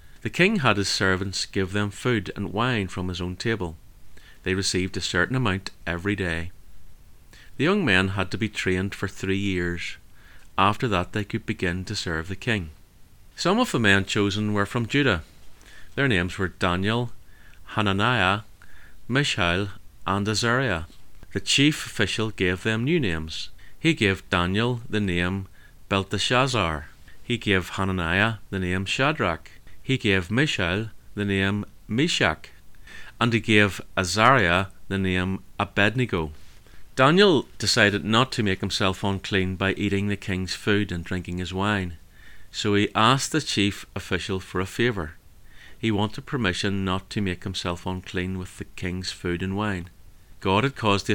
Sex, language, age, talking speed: male, English, 30-49, 155 wpm